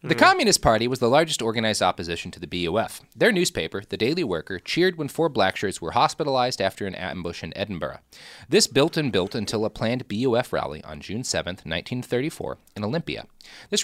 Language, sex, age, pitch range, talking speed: English, male, 30-49, 95-150 Hz, 185 wpm